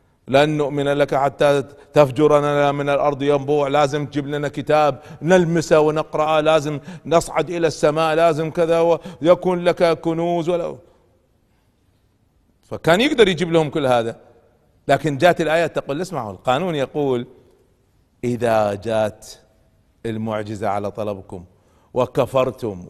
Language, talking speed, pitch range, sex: Arabic, 115 wpm, 120-165 Hz, male